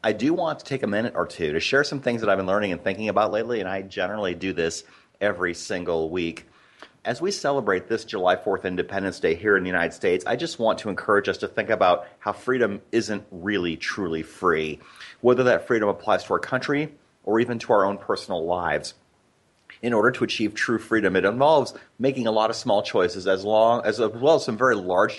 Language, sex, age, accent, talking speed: English, male, 30-49, American, 220 wpm